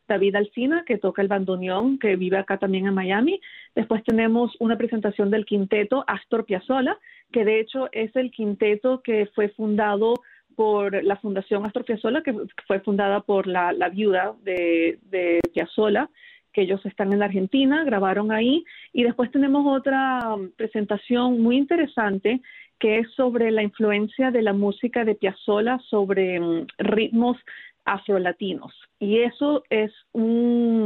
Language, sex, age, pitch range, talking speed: Spanish, female, 40-59, 200-245 Hz, 150 wpm